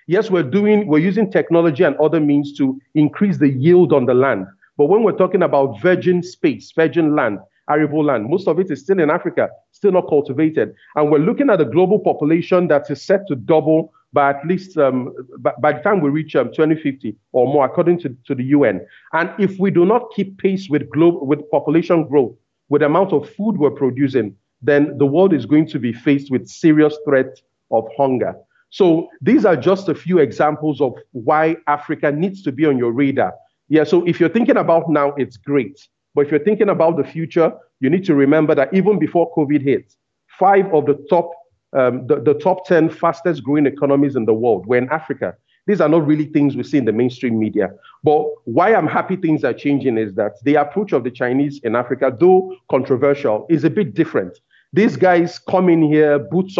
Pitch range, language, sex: 140-175 Hz, English, male